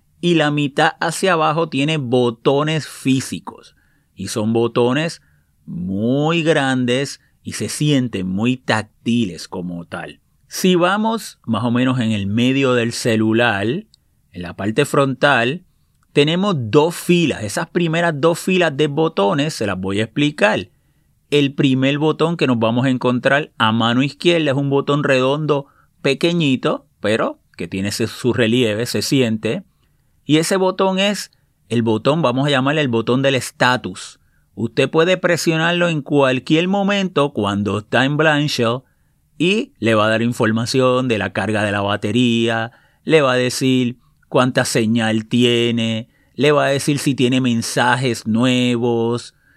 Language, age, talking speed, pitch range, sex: Spanish, 30-49, 145 wpm, 115-150 Hz, male